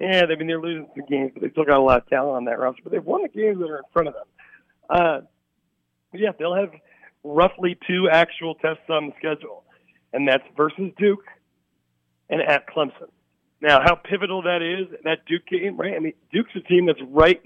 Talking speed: 215 wpm